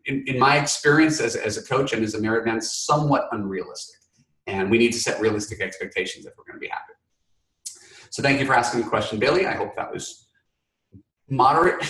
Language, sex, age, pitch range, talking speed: English, male, 30-49, 105-145 Hz, 200 wpm